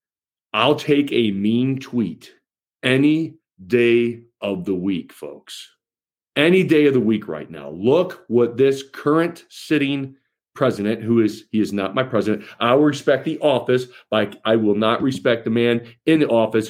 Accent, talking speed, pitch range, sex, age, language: American, 165 wpm, 120-160 Hz, male, 40-59, English